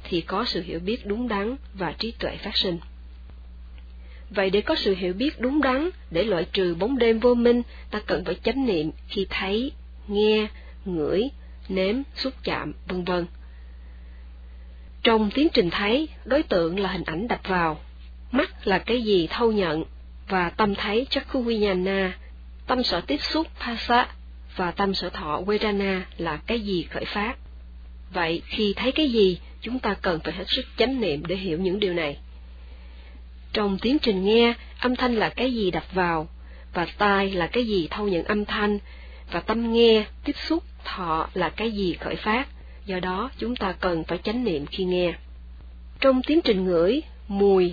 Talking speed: 180 wpm